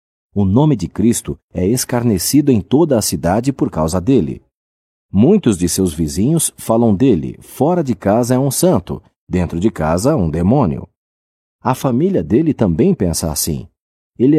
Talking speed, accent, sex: 155 wpm, Brazilian, male